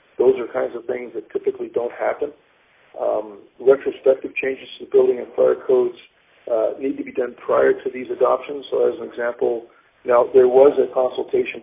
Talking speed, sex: 185 wpm, male